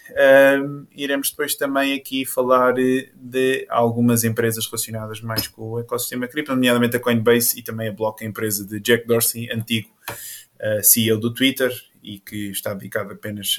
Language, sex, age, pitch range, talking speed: Portuguese, male, 20-39, 115-135 Hz, 150 wpm